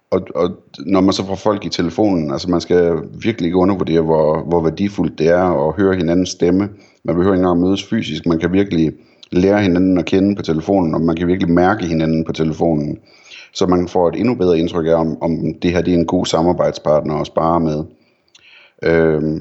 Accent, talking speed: native, 210 wpm